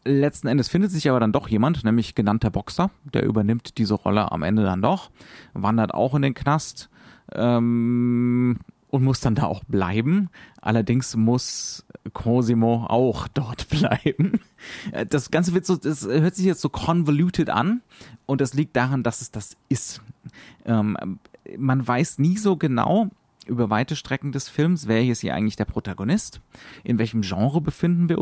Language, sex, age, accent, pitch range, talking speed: German, male, 30-49, German, 110-155 Hz, 165 wpm